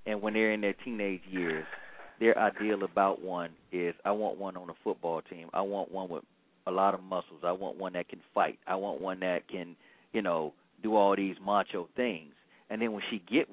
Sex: male